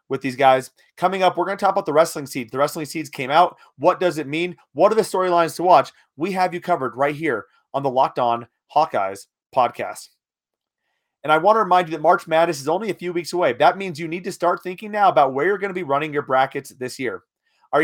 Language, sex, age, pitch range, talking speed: English, male, 30-49, 150-195 Hz, 250 wpm